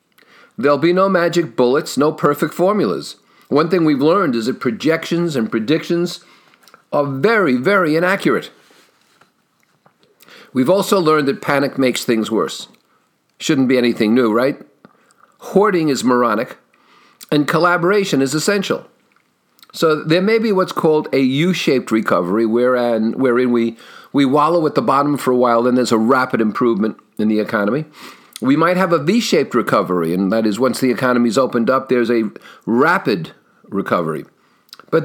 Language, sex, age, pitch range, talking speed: English, male, 50-69, 125-185 Hz, 150 wpm